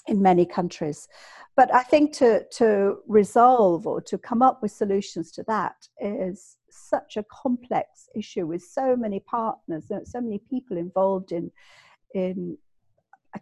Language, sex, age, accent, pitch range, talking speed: English, female, 50-69, British, 175-225 Hz, 150 wpm